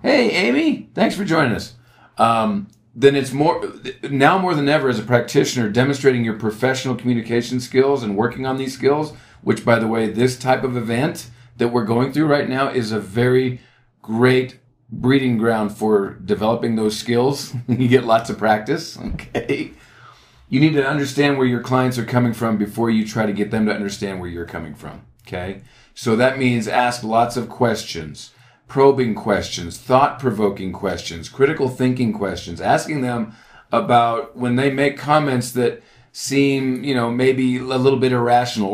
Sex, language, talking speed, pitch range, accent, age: male, English, 170 wpm, 110-135 Hz, American, 40-59